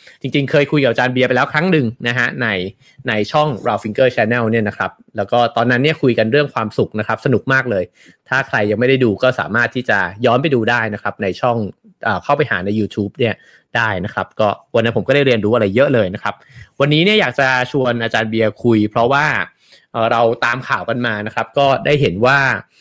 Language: English